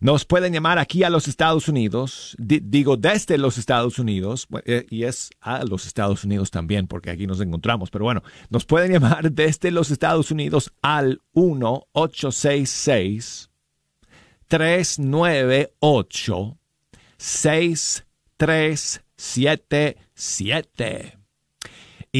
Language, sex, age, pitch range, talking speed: Spanish, male, 50-69, 120-165 Hz, 95 wpm